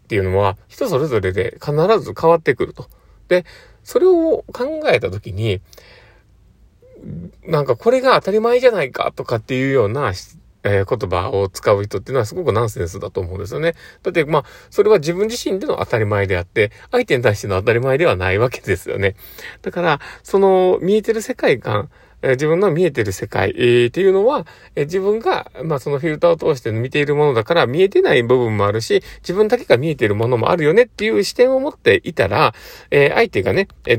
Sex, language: male, Japanese